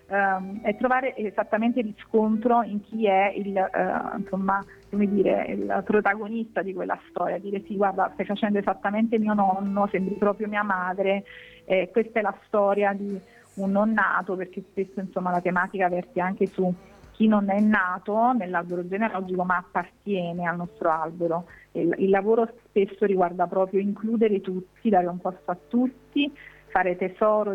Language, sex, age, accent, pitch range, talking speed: Italian, female, 40-59, native, 180-215 Hz, 155 wpm